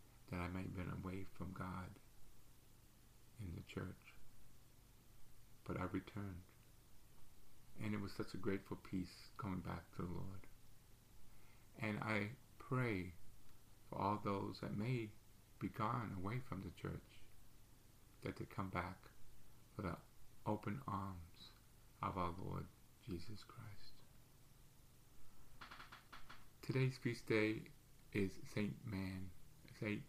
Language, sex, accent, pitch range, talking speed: English, male, American, 100-120 Hz, 120 wpm